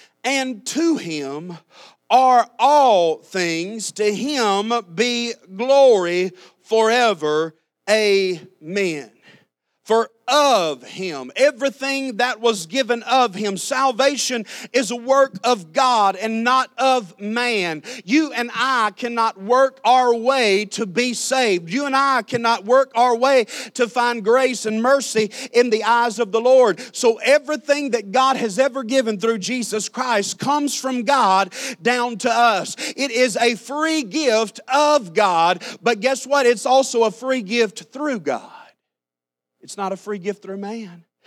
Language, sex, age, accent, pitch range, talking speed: English, male, 40-59, American, 210-260 Hz, 145 wpm